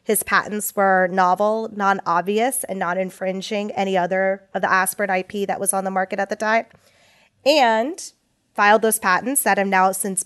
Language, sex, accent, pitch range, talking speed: English, female, American, 190-225 Hz, 175 wpm